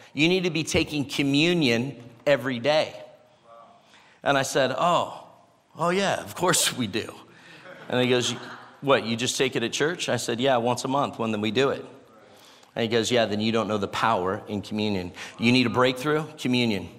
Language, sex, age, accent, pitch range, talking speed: English, male, 40-59, American, 125-150 Hz, 200 wpm